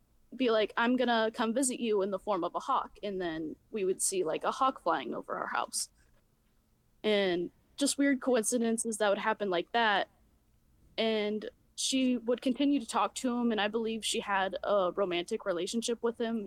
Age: 20-39